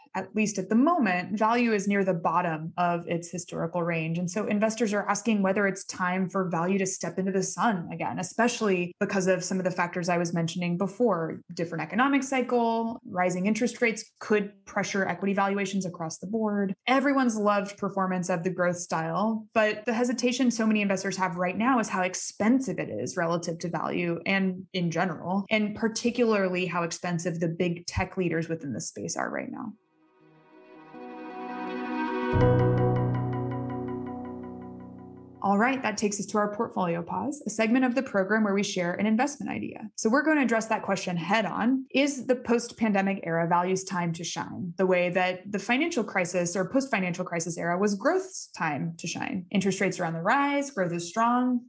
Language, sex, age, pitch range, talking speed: English, female, 20-39, 175-220 Hz, 180 wpm